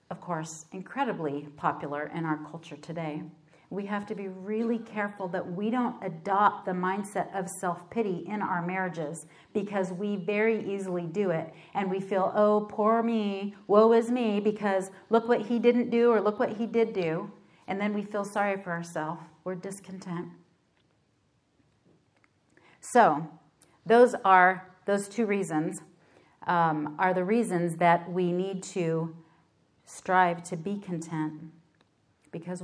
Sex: female